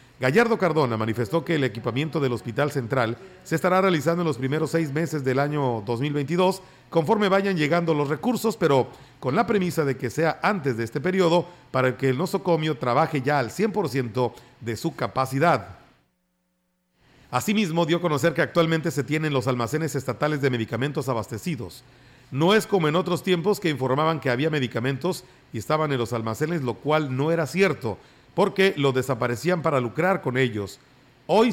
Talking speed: 170 wpm